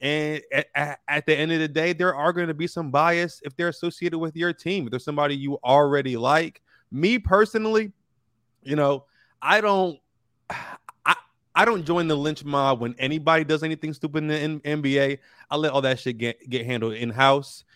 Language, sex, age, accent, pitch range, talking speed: English, male, 20-39, American, 135-170 Hz, 200 wpm